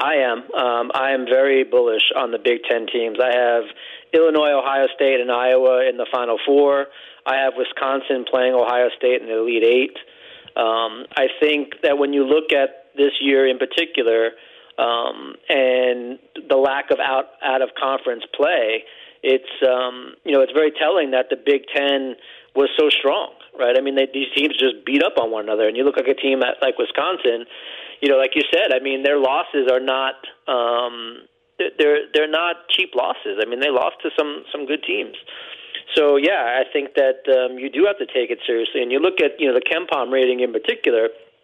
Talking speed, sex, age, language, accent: 200 wpm, male, 40-59, English, American